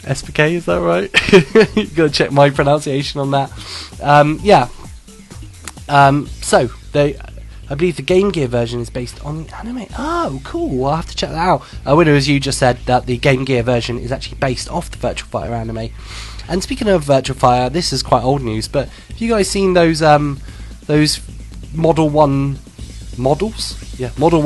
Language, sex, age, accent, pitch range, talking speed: English, male, 20-39, British, 120-150 Hz, 185 wpm